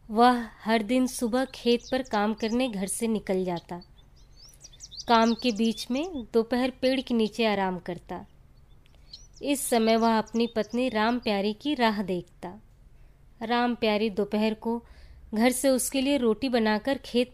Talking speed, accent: 140 wpm, native